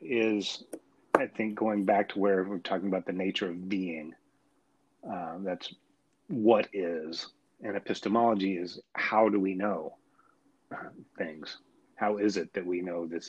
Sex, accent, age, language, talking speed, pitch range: male, American, 30-49, English, 155 wpm, 95-115 Hz